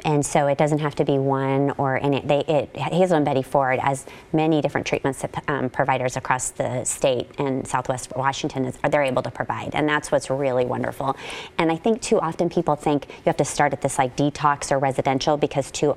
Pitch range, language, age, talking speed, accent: 135-160 Hz, English, 30-49, 220 wpm, American